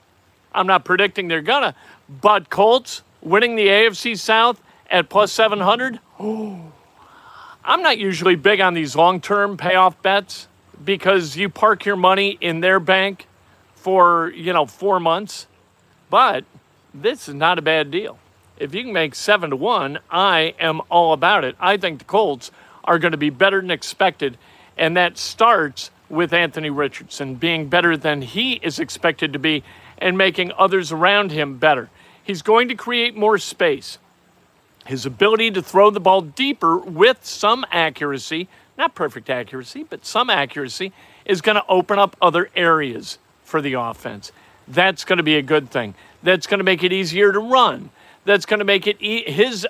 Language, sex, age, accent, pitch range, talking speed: English, male, 50-69, American, 160-205 Hz, 170 wpm